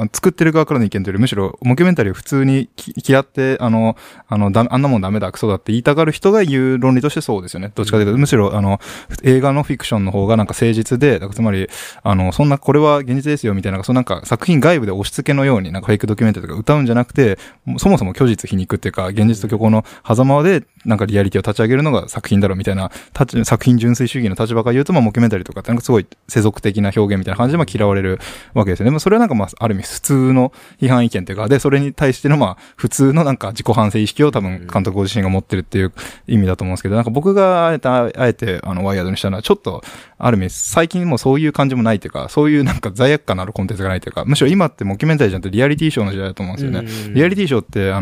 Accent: native